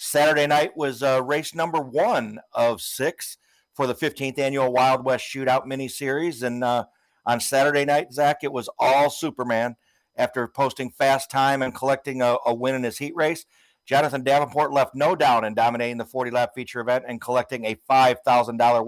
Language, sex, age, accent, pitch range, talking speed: English, male, 50-69, American, 125-140 Hz, 180 wpm